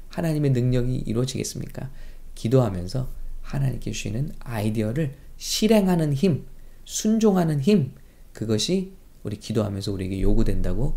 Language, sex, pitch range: English, male, 110-155 Hz